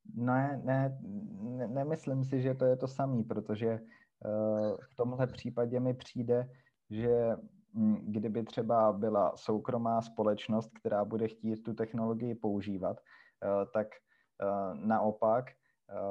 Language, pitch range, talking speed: Czech, 105-125 Hz, 110 wpm